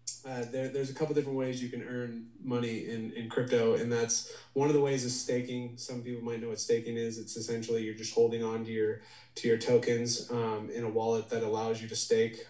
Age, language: 20-39, English